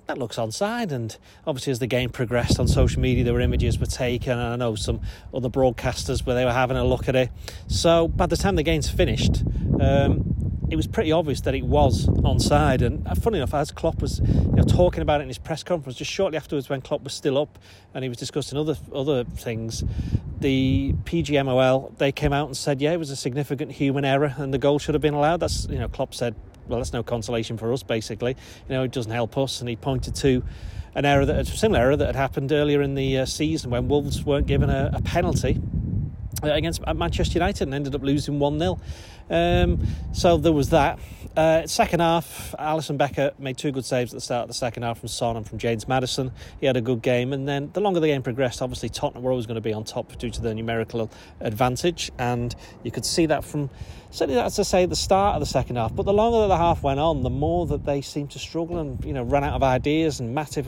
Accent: British